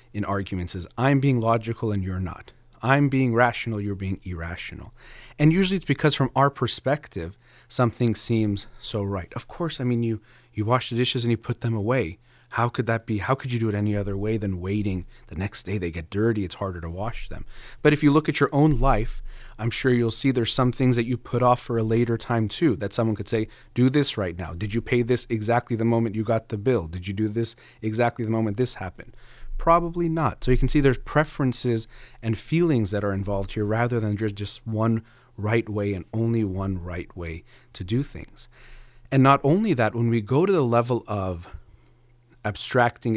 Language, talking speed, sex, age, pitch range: English, 220 wpm, male, 30-49, 105-125 Hz